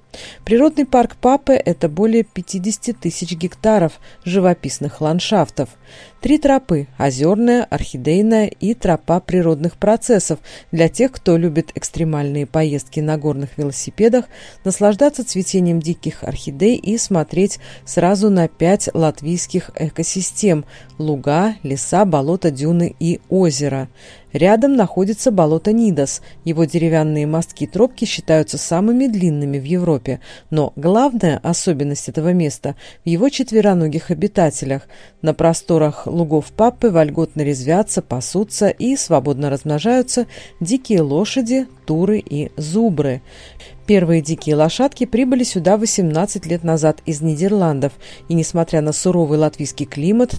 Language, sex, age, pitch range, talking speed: Russian, female, 40-59, 150-205 Hz, 120 wpm